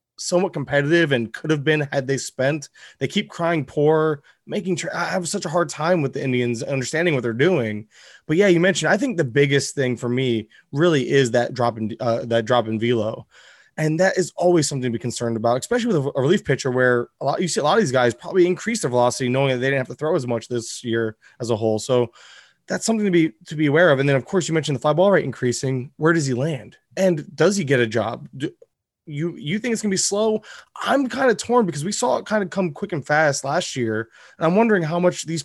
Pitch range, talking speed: 125-170 Hz, 255 wpm